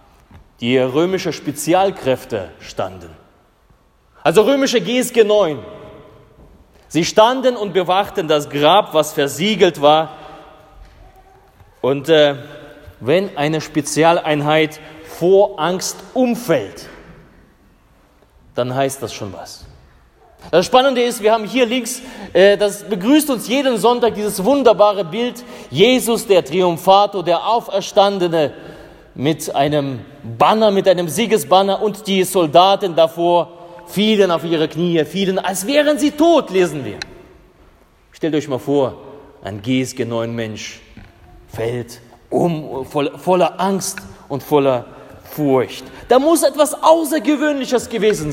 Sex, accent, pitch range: male, German, 145-210 Hz